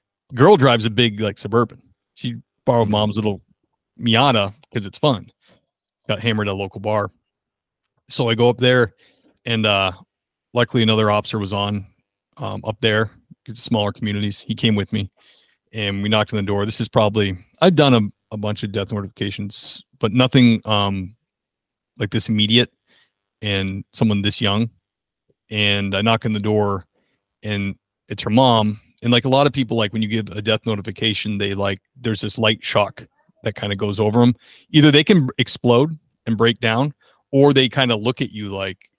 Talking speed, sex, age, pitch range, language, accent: 185 wpm, male, 30-49, 100-125 Hz, English, American